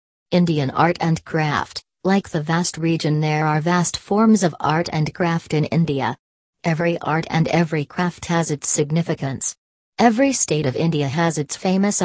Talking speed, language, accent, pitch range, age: 165 wpm, English, American, 150-175 Hz, 40-59